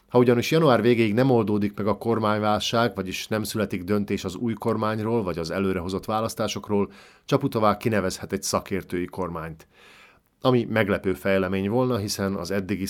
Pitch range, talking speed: 95-115 Hz, 150 wpm